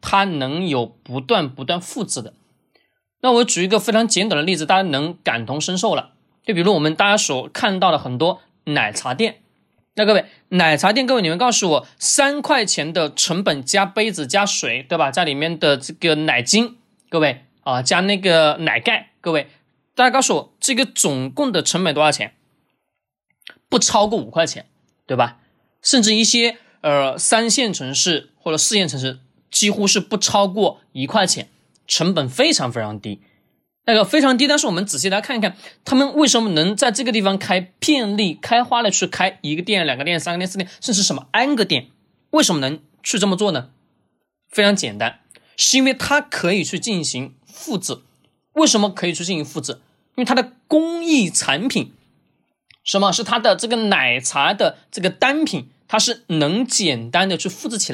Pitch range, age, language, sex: 155-230 Hz, 20-39, Chinese, male